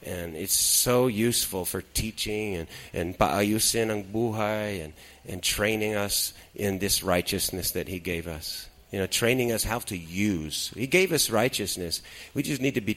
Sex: male